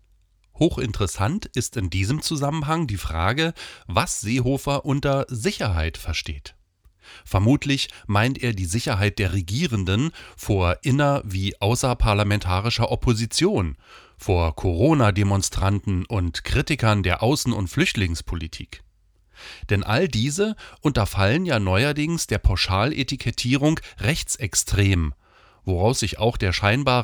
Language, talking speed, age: German, 100 wpm, 40-59